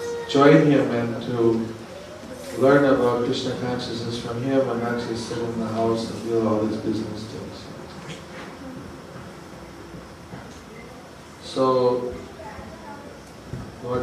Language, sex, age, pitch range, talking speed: English, male, 50-69, 115-130 Hz, 105 wpm